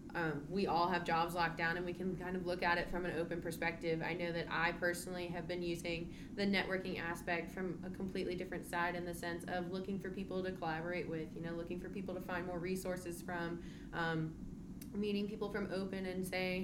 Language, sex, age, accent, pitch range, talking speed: English, female, 20-39, American, 160-180 Hz, 225 wpm